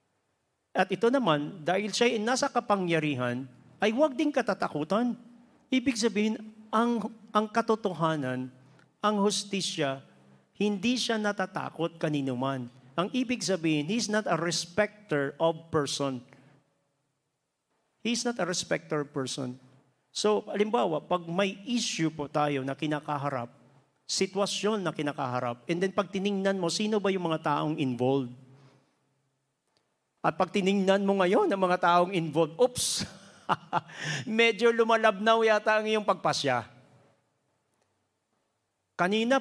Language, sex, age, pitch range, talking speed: Filipino, male, 50-69, 140-210 Hz, 115 wpm